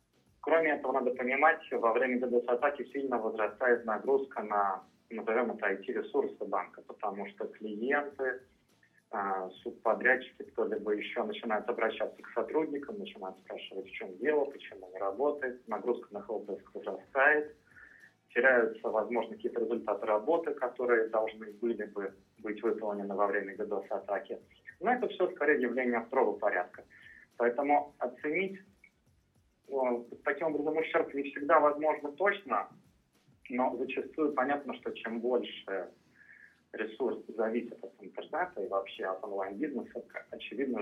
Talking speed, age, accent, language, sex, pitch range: 120 wpm, 30-49, native, Russian, male, 115-155 Hz